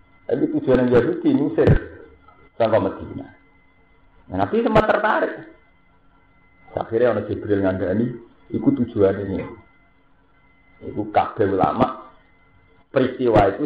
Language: Indonesian